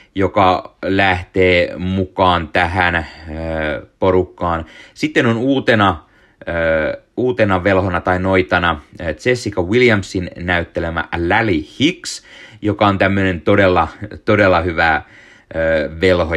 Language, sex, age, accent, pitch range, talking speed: Finnish, male, 30-49, native, 80-95 Hz, 90 wpm